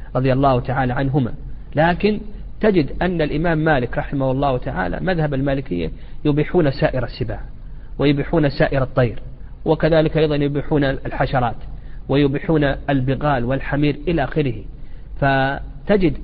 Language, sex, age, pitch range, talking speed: Arabic, male, 40-59, 135-175 Hz, 110 wpm